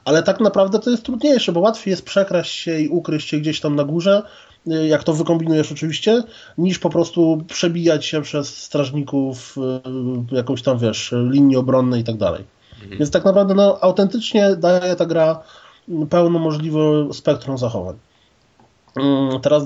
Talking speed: 155 wpm